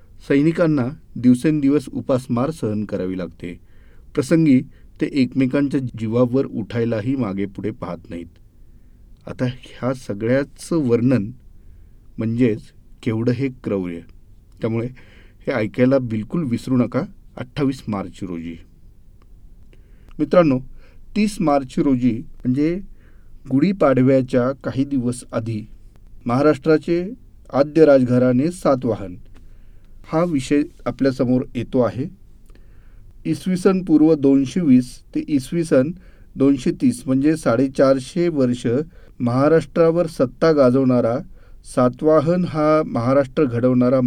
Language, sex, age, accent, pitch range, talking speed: Marathi, male, 40-59, native, 105-145 Hz, 85 wpm